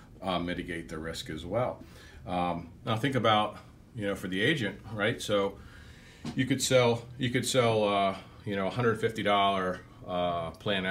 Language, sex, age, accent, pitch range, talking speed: English, male, 40-59, American, 95-115 Hz, 155 wpm